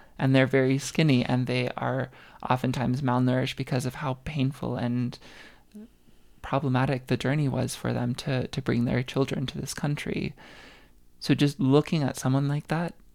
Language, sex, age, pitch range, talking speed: English, male, 20-39, 85-135 Hz, 160 wpm